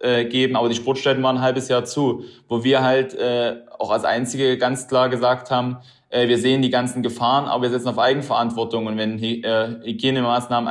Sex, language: male, German